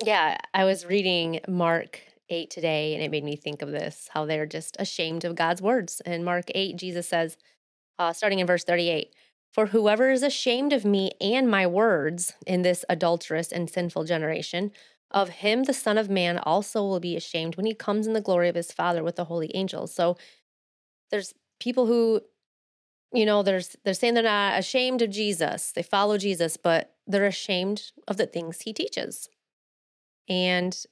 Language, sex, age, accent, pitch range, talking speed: English, female, 30-49, American, 170-210 Hz, 185 wpm